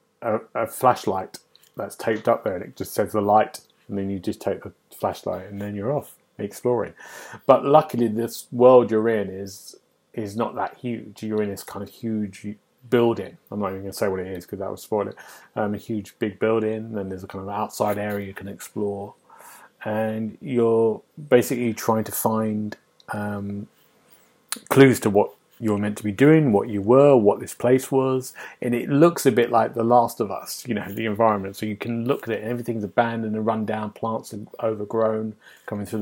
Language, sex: English, male